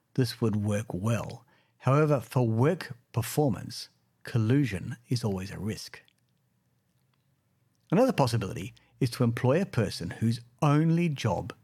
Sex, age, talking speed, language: male, 50-69, 120 wpm, English